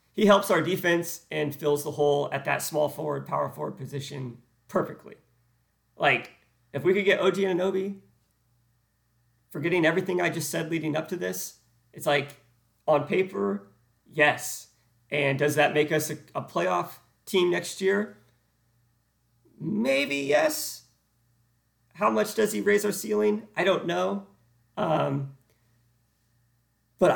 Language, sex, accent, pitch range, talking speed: English, male, American, 120-160 Hz, 135 wpm